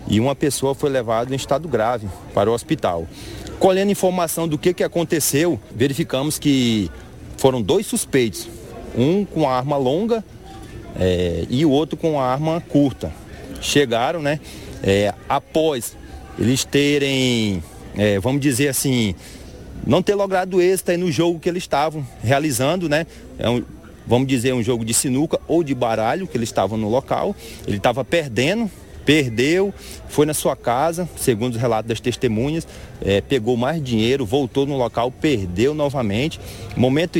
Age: 30-49